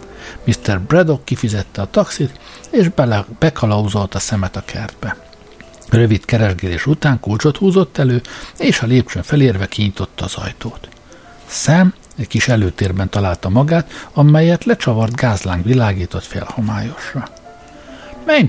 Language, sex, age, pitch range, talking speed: Hungarian, male, 60-79, 100-135 Hz, 125 wpm